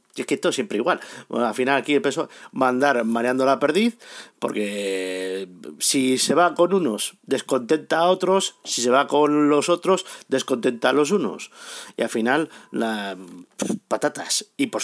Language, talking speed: Spanish, 170 wpm